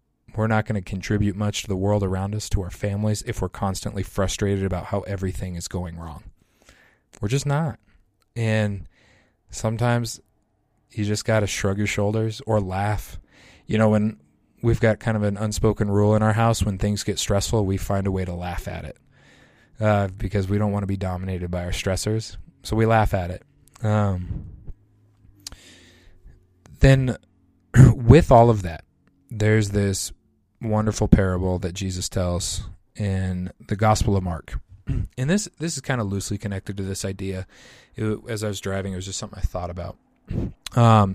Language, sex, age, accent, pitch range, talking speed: English, male, 20-39, American, 95-110 Hz, 175 wpm